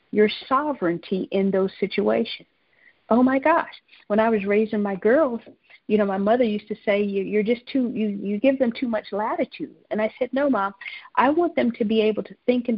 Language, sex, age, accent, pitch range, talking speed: English, female, 50-69, American, 205-255 Hz, 210 wpm